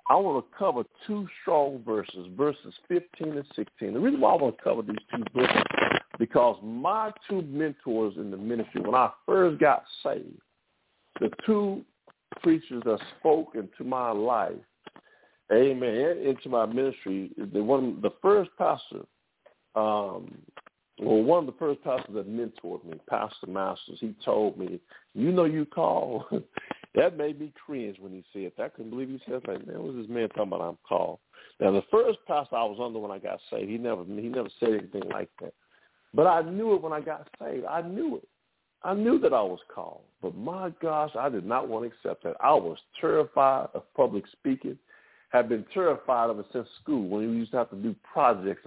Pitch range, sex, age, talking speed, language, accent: 110-175 Hz, male, 50-69, 195 wpm, English, American